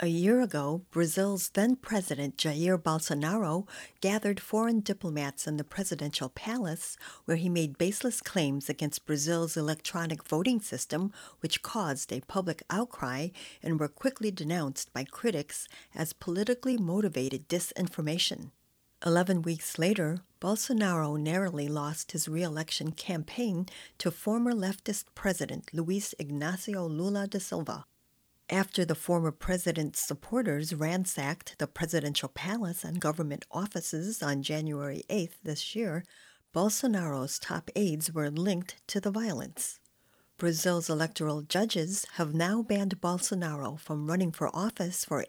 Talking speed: 125 wpm